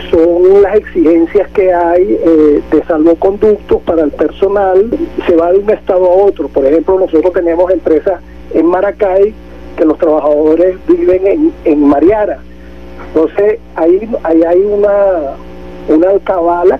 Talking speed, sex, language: 140 wpm, male, Spanish